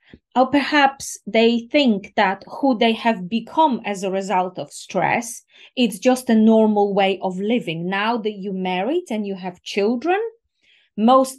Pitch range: 200-255 Hz